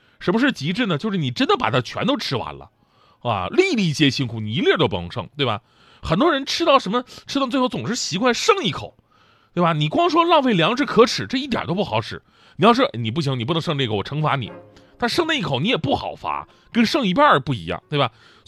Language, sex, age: Chinese, male, 30-49